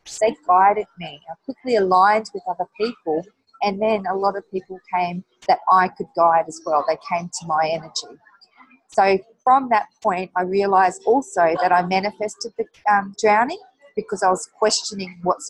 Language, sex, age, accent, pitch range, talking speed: English, female, 40-59, Australian, 170-215 Hz, 175 wpm